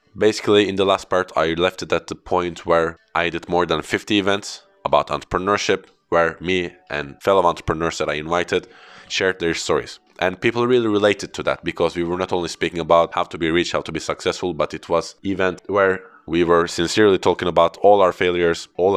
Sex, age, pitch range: male, 20-39, 85-100 Hz